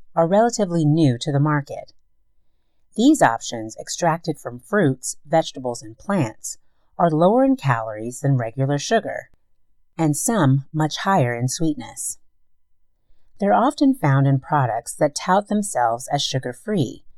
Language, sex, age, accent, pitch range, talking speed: English, female, 40-59, American, 115-175 Hz, 130 wpm